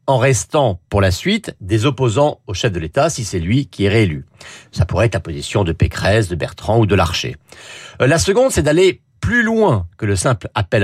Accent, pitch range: French, 100-150 Hz